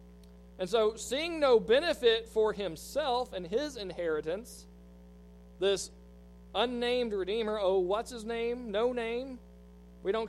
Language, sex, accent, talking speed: English, male, American, 120 wpm